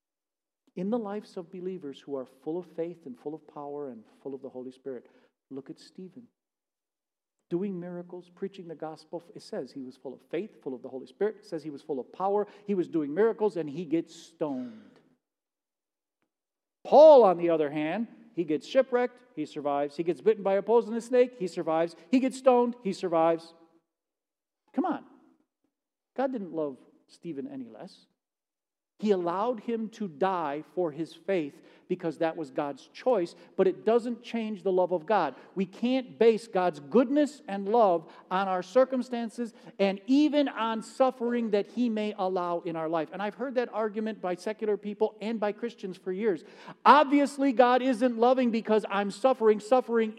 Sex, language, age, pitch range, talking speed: male, English, 50-69, 165-240 Hz, 180 wpm